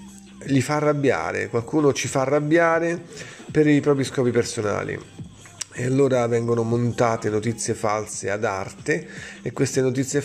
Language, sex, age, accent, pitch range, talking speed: Italian, male, 30-49, native, 115-135 Hz, 135 wpm